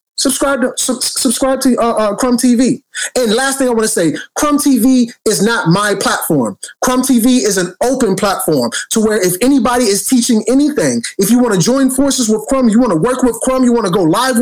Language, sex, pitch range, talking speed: English, male, 210-265 Hz, 225 wpm